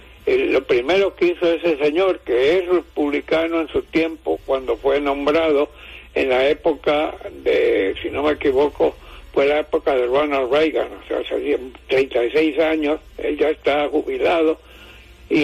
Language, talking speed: English, 155 wpm